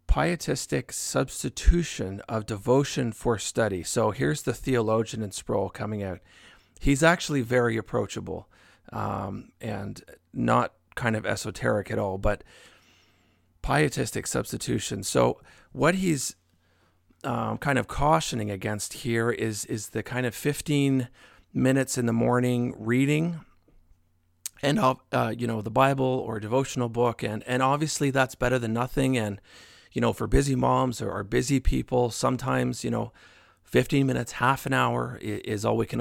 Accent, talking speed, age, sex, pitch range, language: American, 145 wpm, 40-59, male, 100-130 Hz, English